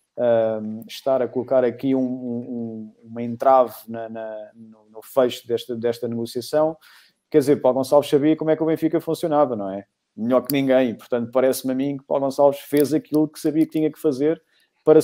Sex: male